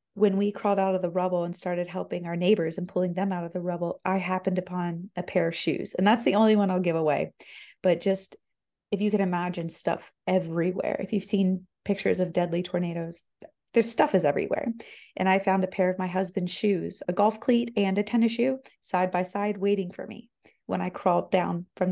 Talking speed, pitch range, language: 220 wpm, 180-220 Hz, English